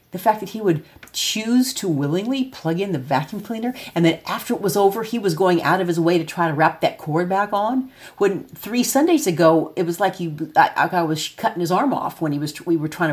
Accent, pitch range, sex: American, 150-185 Hz, female